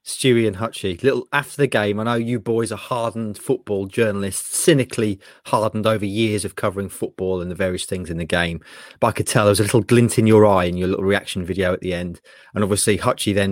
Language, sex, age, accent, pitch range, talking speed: English, male, 30-49, British, 100-125 Hz, 235 wpm